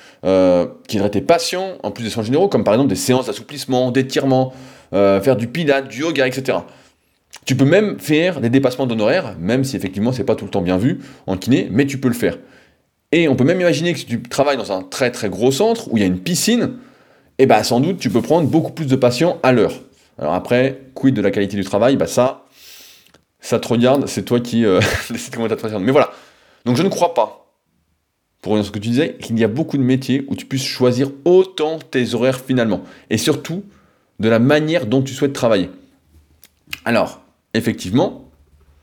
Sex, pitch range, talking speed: male, 105-140 Hz, 220 wpm